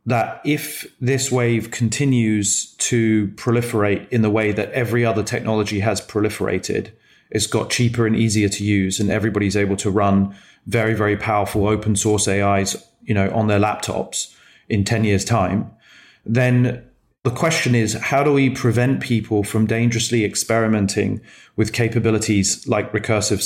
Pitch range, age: 105-120 Hz, 30-49